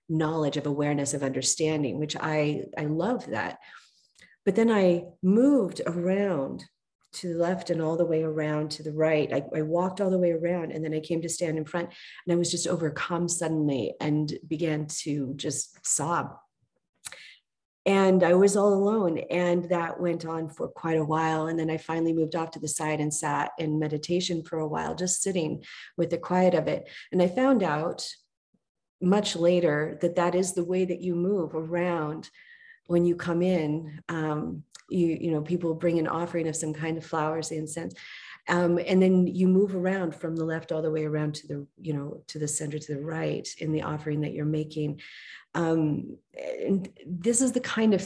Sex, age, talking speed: female, 40-59, 195 wpm